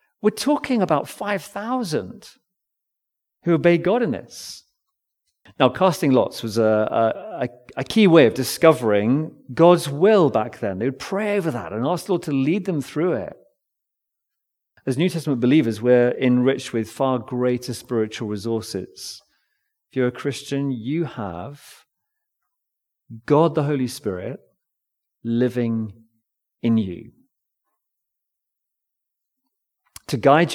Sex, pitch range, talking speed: male, 125-180 Hz, 125 wpm